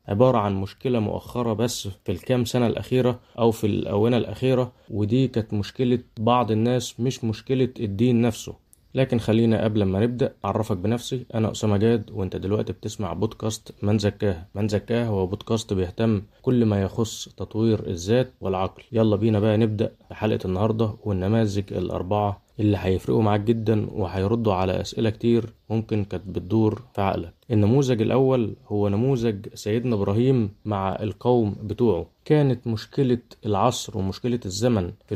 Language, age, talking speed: Arabic, 20-39, 140 wpm